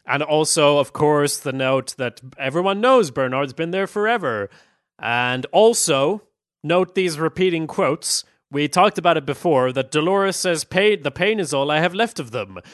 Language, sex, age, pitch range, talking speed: English, male, 30-49, 130-170 Hz, 175 wpm